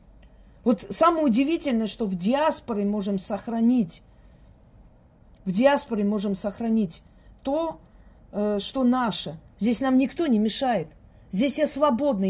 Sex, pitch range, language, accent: female, 205-270 Hz, Russian, native